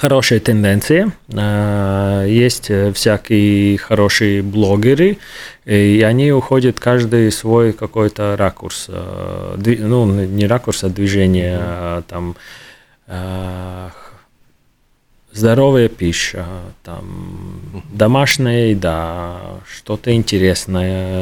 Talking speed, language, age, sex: 75 wpm, Russian, 30-49, male